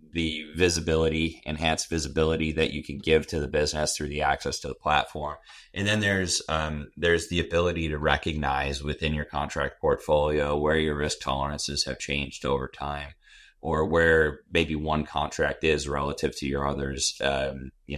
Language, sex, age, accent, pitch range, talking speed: English, male, 30-49, American, 70-85 Hz, 165 wpm